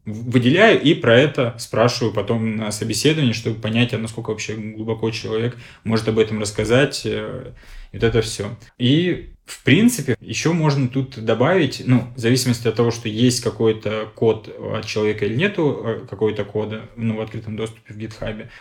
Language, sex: Russian, male